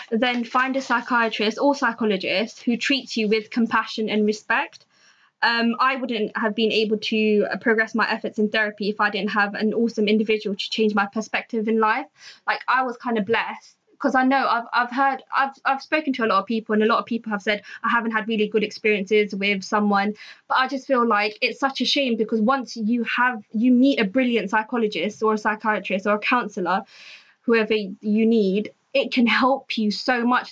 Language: English